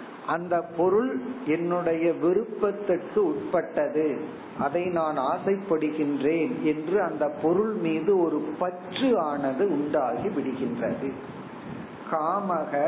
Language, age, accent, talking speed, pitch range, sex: Tamil, 50-69, native, 75 wpm, 155-200 Hz, male